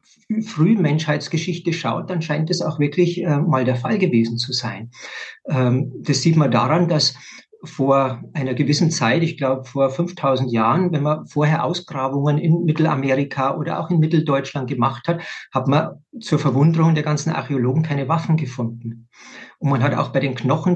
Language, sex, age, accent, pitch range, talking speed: German, male, 50-69, German, 135-170 Hz, 170 wpm